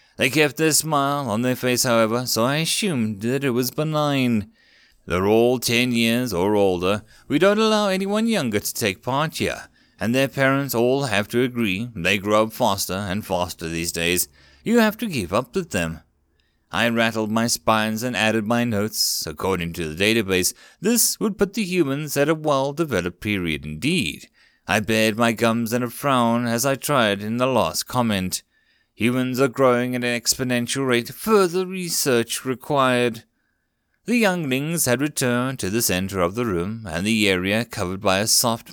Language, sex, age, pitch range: English, male, 30-49, 105-135 Hz